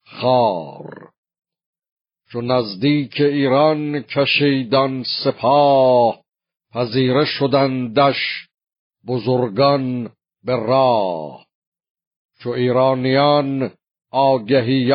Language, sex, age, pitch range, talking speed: Persian, male, 50-69, 125-145 Hz, 55 wpm